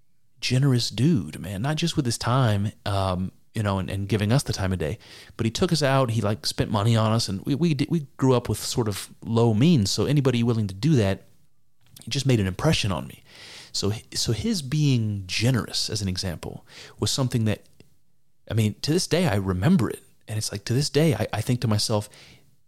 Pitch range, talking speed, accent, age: 105-135 Hz, 225 wpm, American, 30-49